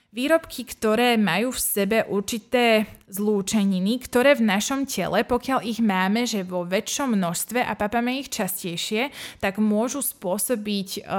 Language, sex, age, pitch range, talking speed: Slovak, female, 20-39, 195-240 Hz, 135 wpm